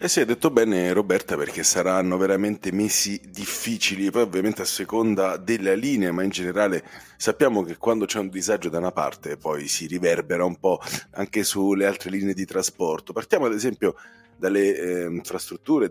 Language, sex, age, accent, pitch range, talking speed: Italian, male, 30-49, native, 90-105 Hz, 175 wpm